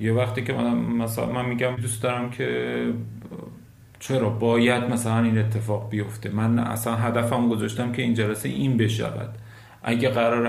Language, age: Persian, 40-59